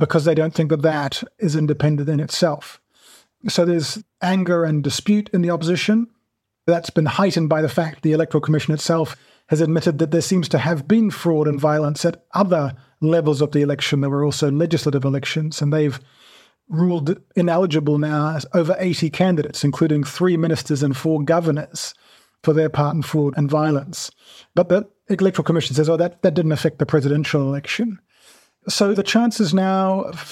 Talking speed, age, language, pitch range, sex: 180 wpm, 30-49, English, 150-175 Hz, male